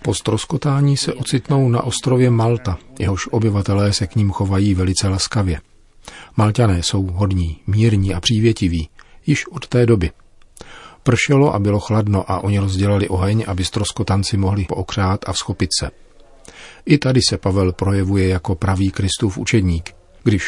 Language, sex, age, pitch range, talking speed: Czech, male, 40-59, 95-115 Hz, 145 wpm